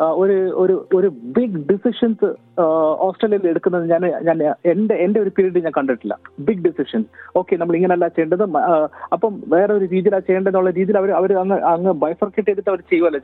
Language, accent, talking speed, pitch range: Malayalam, native, 150 wpm, 175-215 Hz